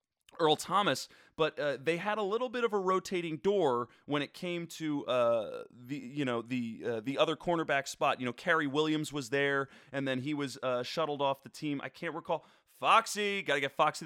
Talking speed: 215 wpm